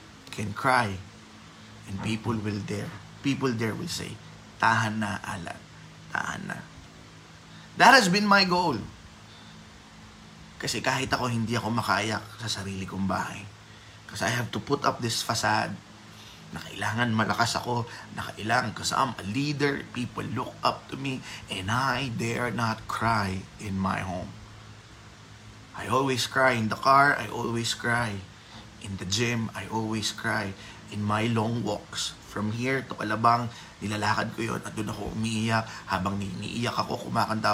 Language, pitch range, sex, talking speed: Filipino, 105-120 Hz, male, 150 wpm